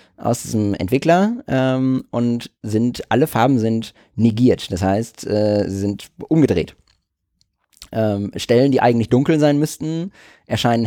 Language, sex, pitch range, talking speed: German, male, 100-130 Hz, 130 wpm